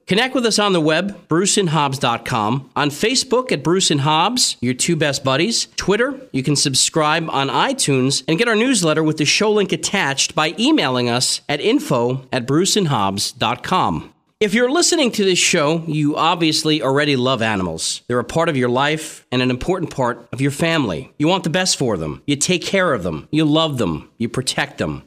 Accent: American